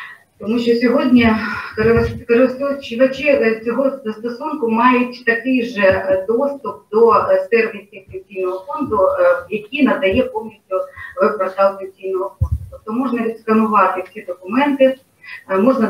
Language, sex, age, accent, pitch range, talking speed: Ukrainian, female, 30-49, native, 190-240 Hz, 100 wpm